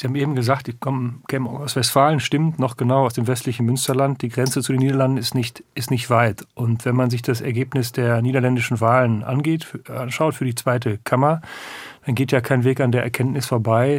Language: German